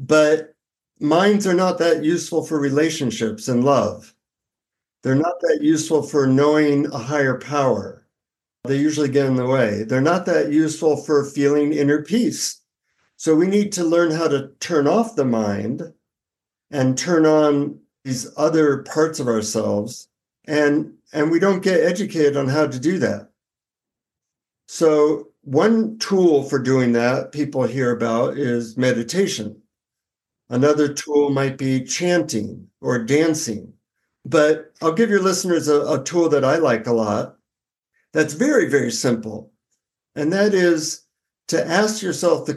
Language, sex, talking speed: Hindi, male, 150 wpm